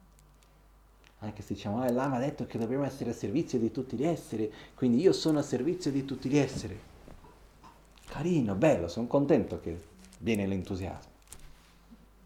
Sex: male